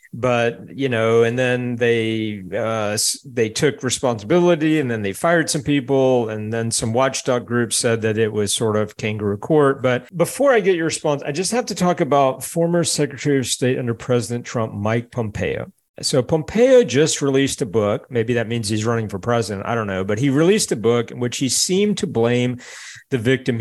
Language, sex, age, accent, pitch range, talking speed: English, male, 50-69, American, 115-145 Hz, 200 wpm